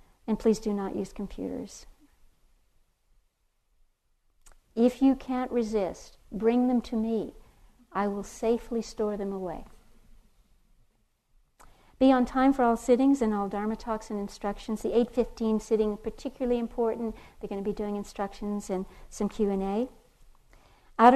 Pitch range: 200-240 Hz